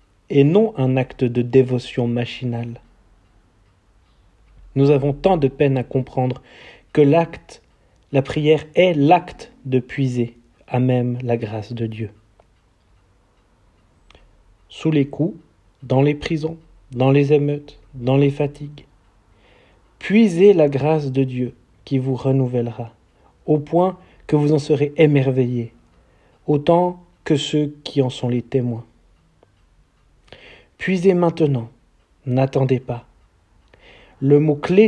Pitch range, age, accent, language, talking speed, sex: 110-145 Hz, 40-59, French, French, 120 wpm, male